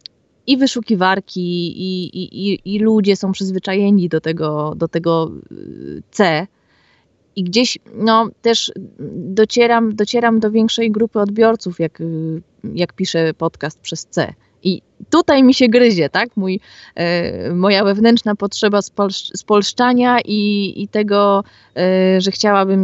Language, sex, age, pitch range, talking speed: Polish, female, 20-39, 180-225 Hz, 120 wpm